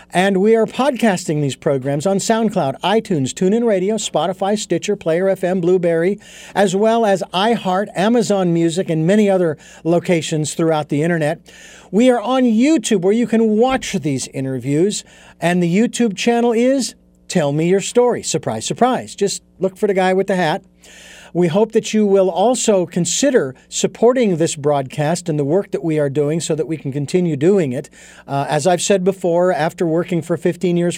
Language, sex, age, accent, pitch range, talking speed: English, male, 50-69, American, 160-210 Hz, 180 wpm